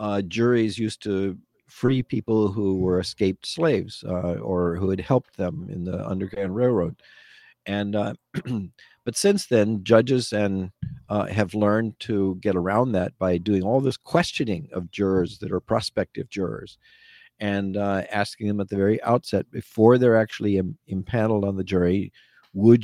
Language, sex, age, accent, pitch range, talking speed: English, male, 50-69, American, 95-120 Hz, 165 wpm